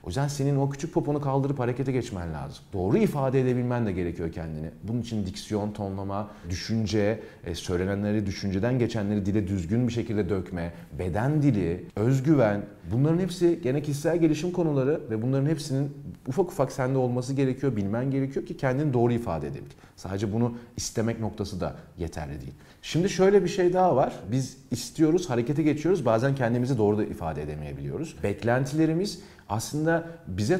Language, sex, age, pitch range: Turkish, male, 40-59, 100-150 Hz